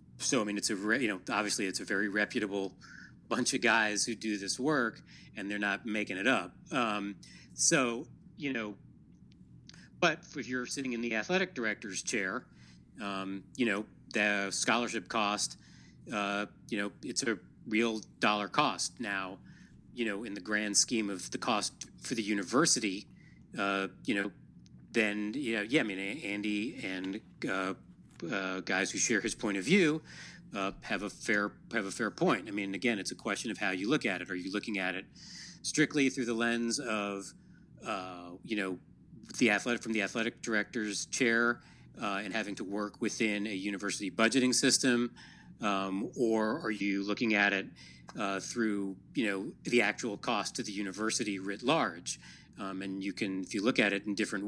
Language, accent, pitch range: English, American, 100-115 Hz